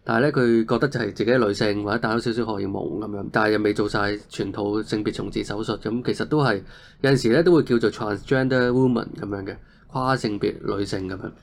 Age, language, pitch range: 20-39, Chinese, 105-130 Hz